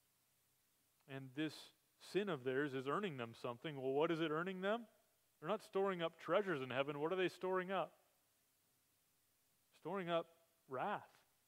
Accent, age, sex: American, 30-49, male